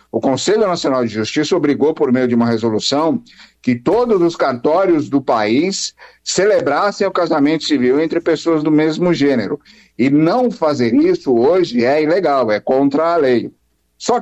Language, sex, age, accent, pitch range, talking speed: Portuguese, male, 60-79, Brazilian, 120-195 Hz, 160 wpm